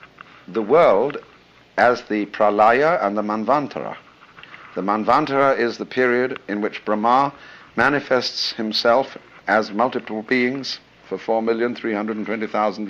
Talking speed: 135 wpm